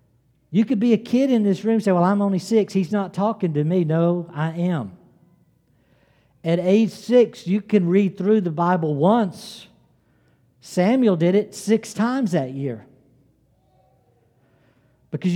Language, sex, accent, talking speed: English, male, American, 155 wpm